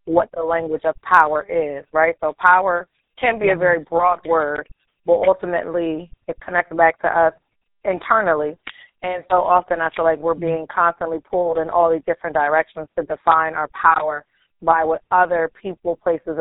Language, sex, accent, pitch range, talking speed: English, female, American, 155-175 Hz, 170 wpm